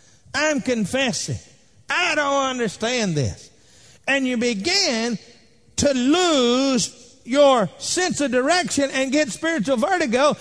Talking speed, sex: 110 wpm, male